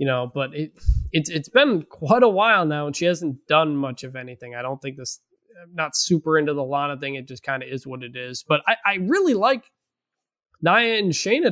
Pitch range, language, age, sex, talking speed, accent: 130-165 Hz, English, 20-39, male, 245 wpm, American